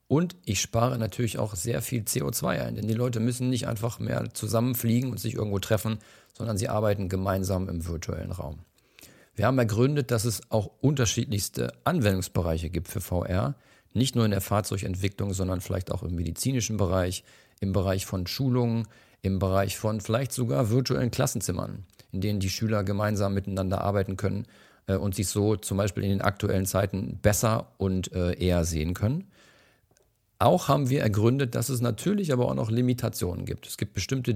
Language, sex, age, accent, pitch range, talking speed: German, male, 40-59, German, 95-120 Hz, 170 wpm